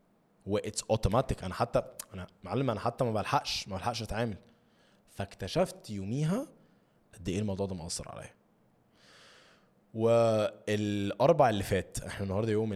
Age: 20-39